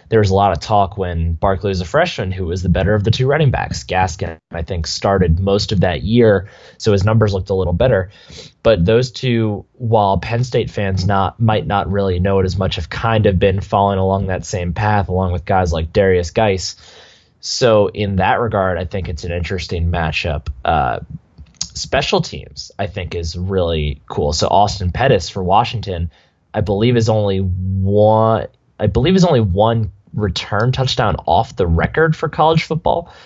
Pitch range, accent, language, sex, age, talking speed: 90-110 Hz, American, English, male, 20-39, 190 wpm